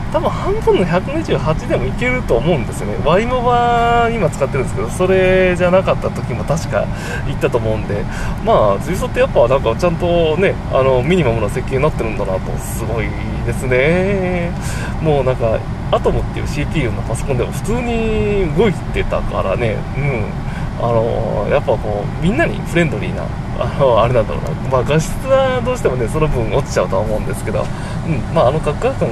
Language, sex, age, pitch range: Japanese, male, 20-39, 115-165 Hz